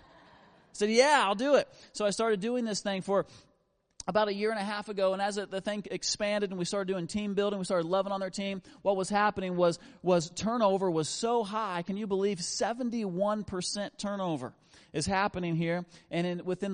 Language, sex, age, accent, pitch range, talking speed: English, male, 30-49, American, 180-210 Hz, 205 wpm